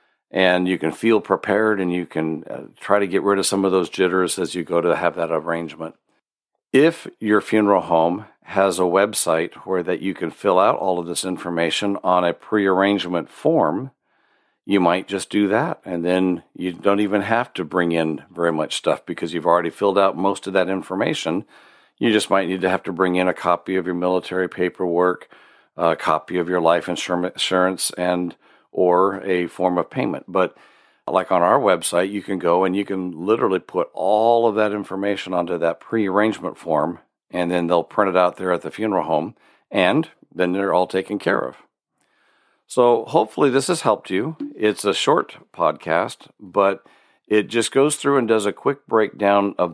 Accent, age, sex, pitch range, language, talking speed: American, 50-69, male, 90-100 Hz, English, 190 wpm